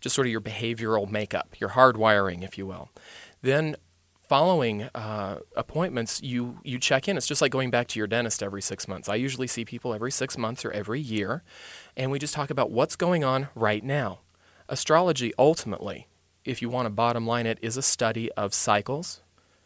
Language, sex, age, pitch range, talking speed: English, male, 30-49, 110-130 Hz, 195 wpm